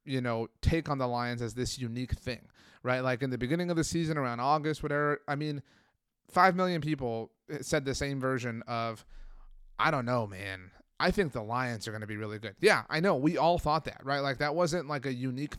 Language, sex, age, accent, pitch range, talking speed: English, male, 30-49, American, 115-145 Hz, 225 wpm